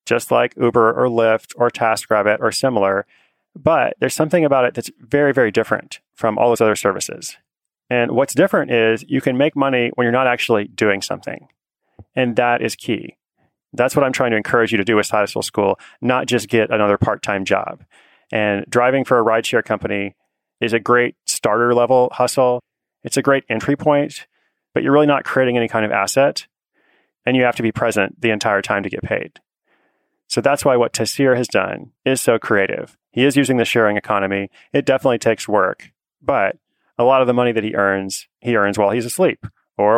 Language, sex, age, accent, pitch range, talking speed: English, male, 30-49, American, 110-130 Hz, 200 wpm